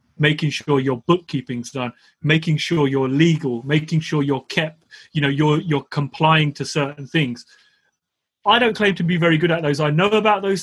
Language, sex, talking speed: English, male, 190 wpm